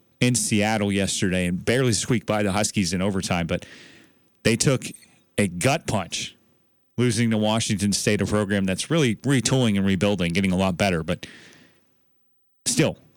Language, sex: English, male